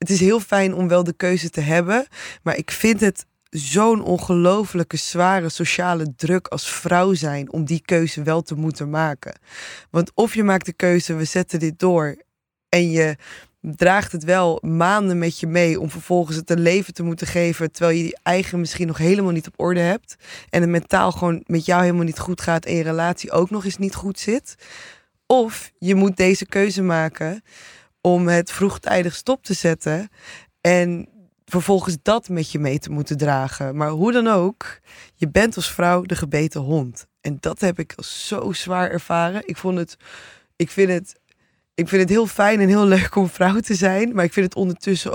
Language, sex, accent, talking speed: Dutch, female, Dutch, 200 wpm